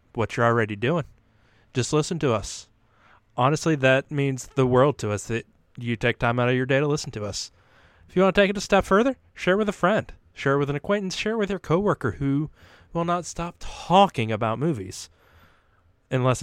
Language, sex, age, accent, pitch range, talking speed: English, male, 30-49, American, 115-165 Hz, 215 wpm